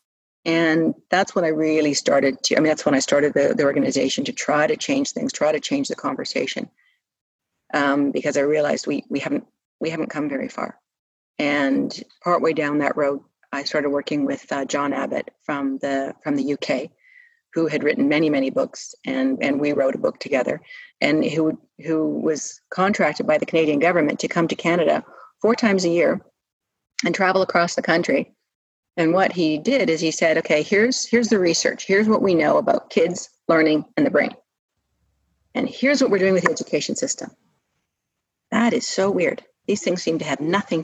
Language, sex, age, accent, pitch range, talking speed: English, female, 40-59, American, 150-245 Hz, 195 wpm